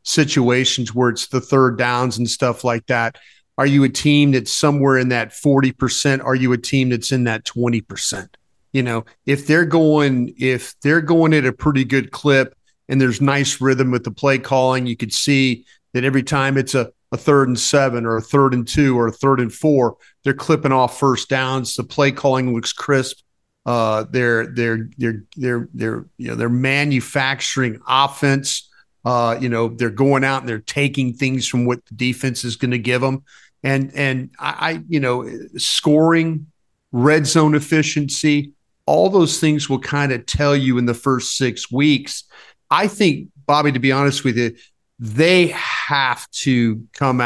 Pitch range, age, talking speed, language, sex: 120-140 Hz, 40-59, 190 wpm, English, male